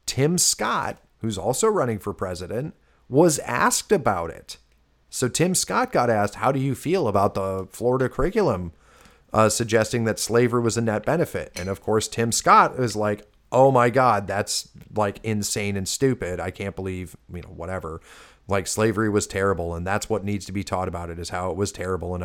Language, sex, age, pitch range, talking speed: English, male, 30-49, 90-110 Hz, 195 wpm